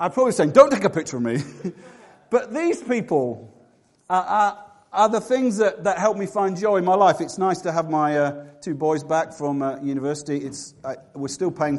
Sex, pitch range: male, 170-230 Hz